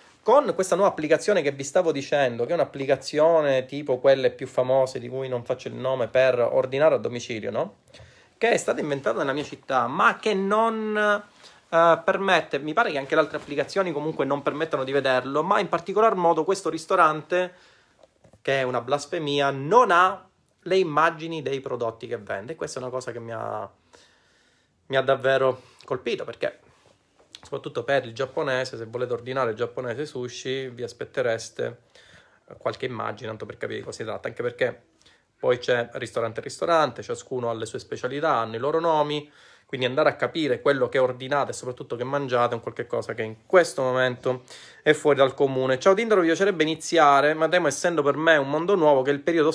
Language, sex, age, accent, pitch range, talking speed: Italian, male, 30-49, native, 130-170 Hz, 190 wpm